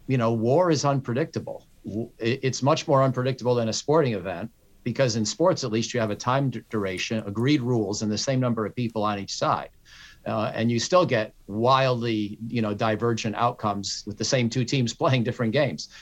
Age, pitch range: 50-69, 105-125 Hz